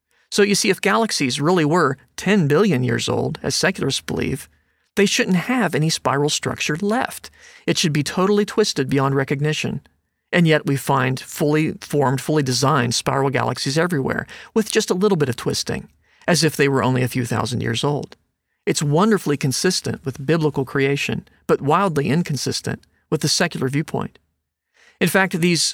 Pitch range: 135-180 Hz